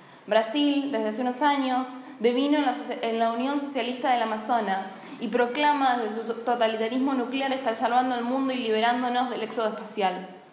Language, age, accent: Portuguese, 10-29, Argentinian